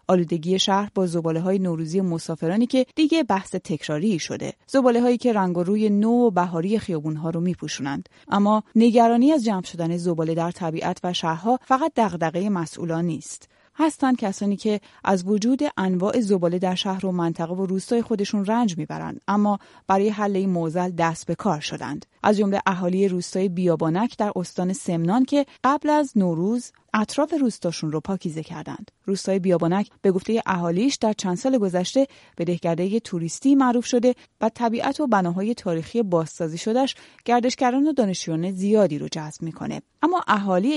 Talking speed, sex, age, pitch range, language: 160 wpm, female, 30-49, 170-230 Hz, Persian